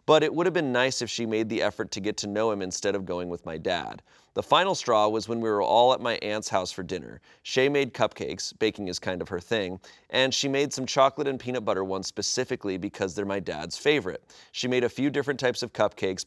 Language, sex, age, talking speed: English, male, 30-49, 250 wpm